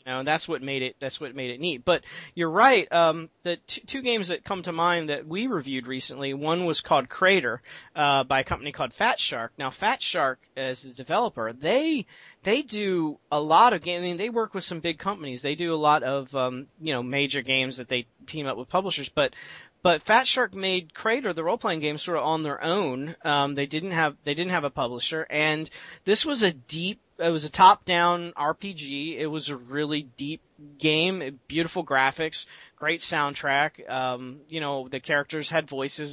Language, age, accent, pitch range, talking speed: English, 40-59, American, 145-180 Hz, 215 wpm